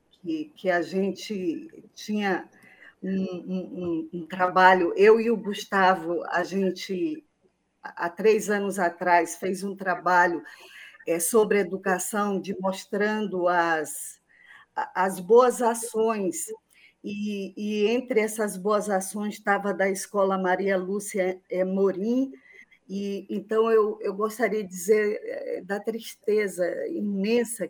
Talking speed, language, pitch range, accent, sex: 115 wpm, Portuguese, 185-215 Hz, Brazilian, female